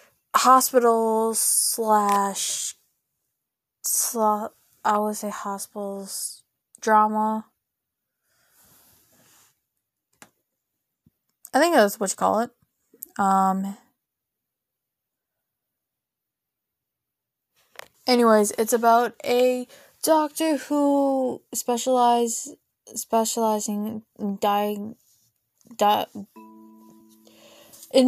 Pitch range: 195-250 Hz